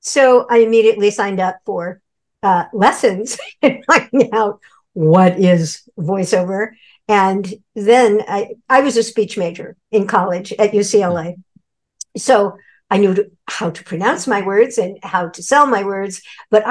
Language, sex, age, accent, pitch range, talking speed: English, male, 60-79, American, 190-235 Hz, 145 wpm